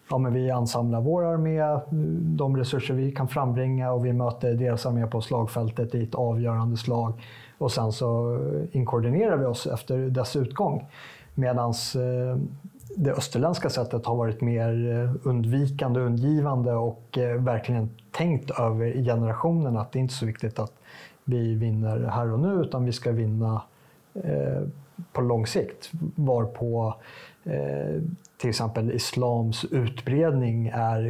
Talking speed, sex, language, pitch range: 145 wpm, male, Swedish, 115-135 Hz